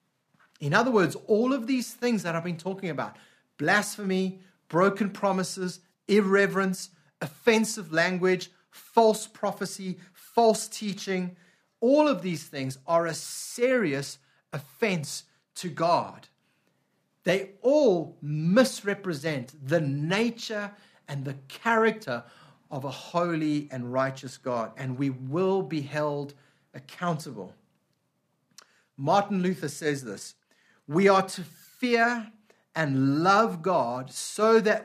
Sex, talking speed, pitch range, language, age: male, 110 wpm, 155-215 Hz, English, 30-49